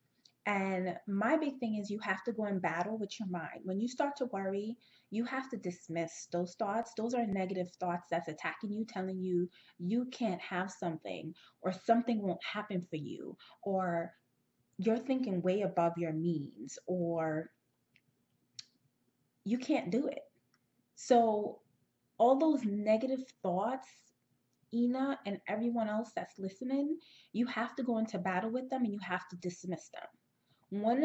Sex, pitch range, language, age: female, 180-230 Hz, English, 30-49